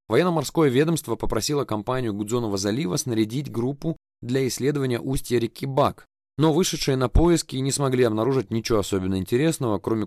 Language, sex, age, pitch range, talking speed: Russian, male, 20-39, 105-135 Hz, 145 wpm